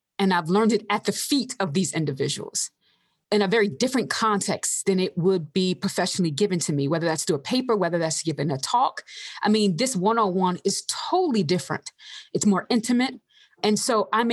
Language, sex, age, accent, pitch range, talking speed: English, female, 30-49, American, 170-215 Hz, 195 wpm